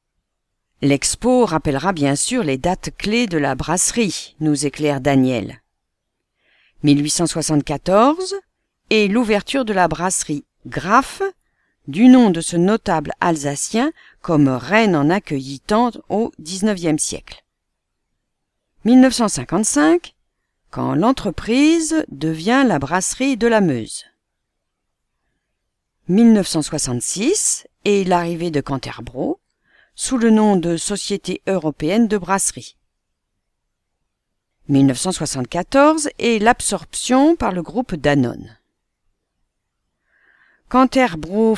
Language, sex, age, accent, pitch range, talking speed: English, female, 50-69, French, 155-235 Hz, 90 wpm